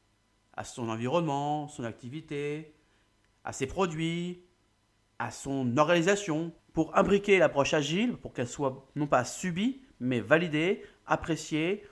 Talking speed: 120 wpm